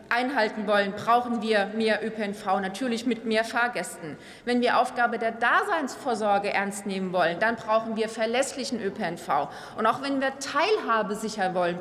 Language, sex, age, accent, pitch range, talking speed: German, female, 40-59, German, 220-275 Hz, 155 wpm